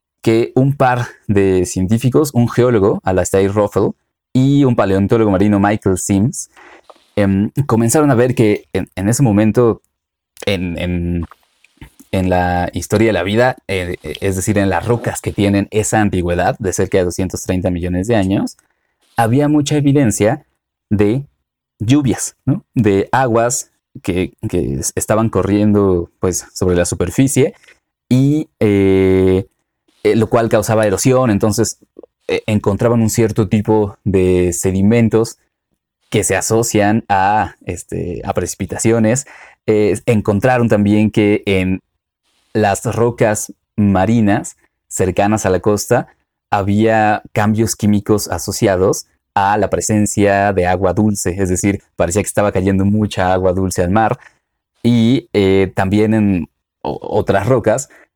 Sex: male